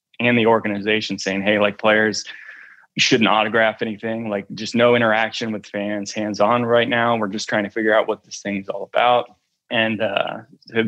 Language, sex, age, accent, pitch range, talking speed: English, male, 20-39, American, 110-130 Hz, 195 wpm